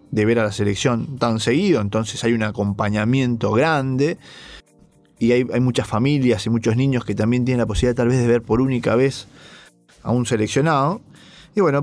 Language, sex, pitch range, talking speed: English, male, 115-135 Hz, 190 wpm